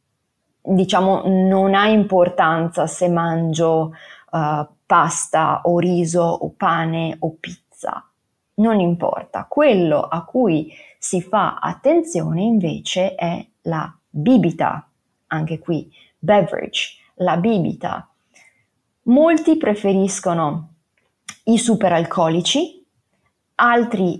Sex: female